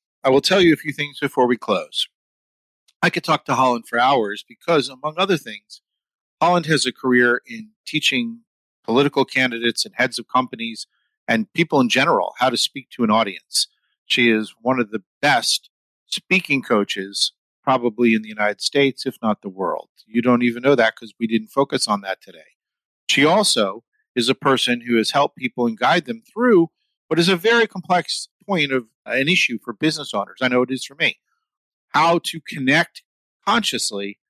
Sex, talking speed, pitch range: male, 185 wpm, 130-170 Hz